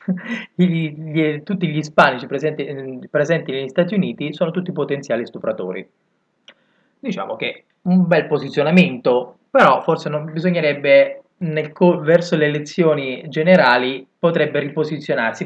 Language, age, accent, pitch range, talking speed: Italian, 20-39, native, 135-175 Hz, 105 wpm